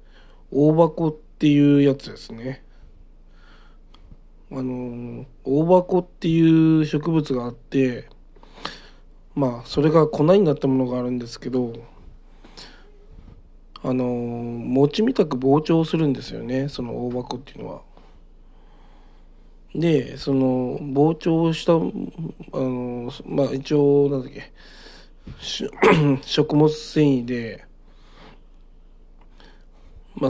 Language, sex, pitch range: Japanese, male, 125-150 Hz